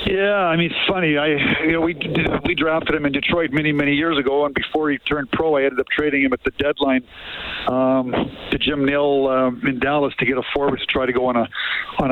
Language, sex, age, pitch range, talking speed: English, male, 50-69, 135-150 Hz, 245 wpm